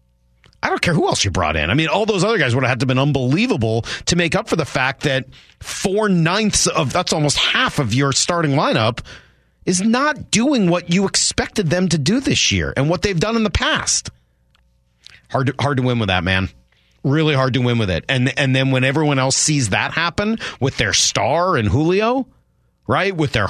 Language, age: English, 40-59